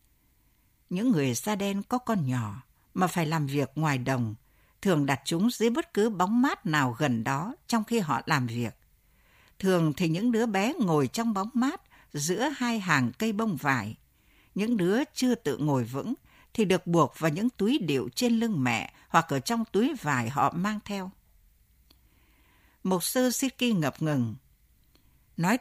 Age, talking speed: 60-79, 175 wpm